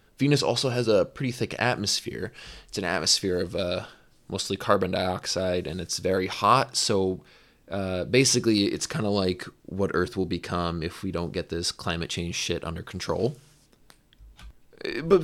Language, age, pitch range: English, 20-39, 95-125 Hz